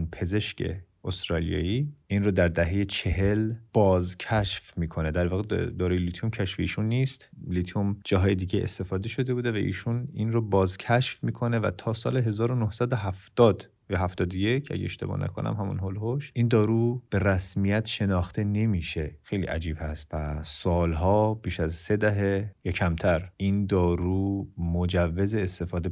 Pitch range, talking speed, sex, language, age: 90-110 Hz, 140 wpm, male, Persian, 30-49